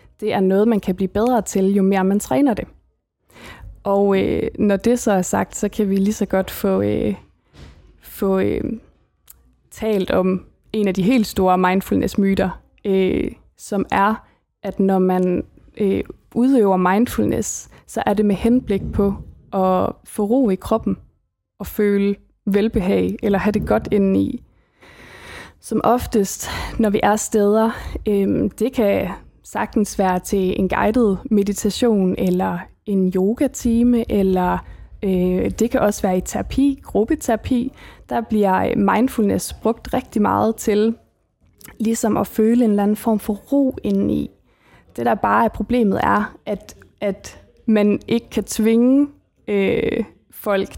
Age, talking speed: 20-39, 140 wpm